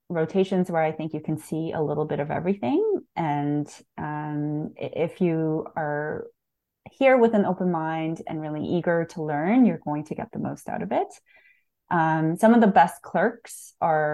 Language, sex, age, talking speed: English, female, 30-49, 180 wpm